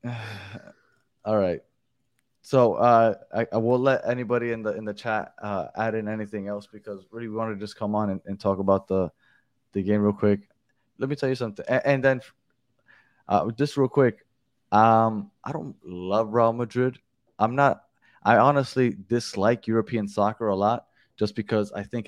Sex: male